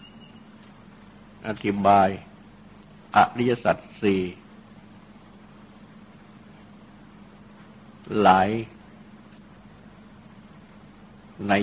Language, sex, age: Thai, male, 60-79